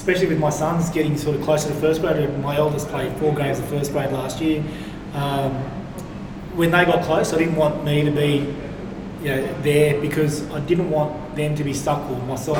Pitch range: 140-150 Hz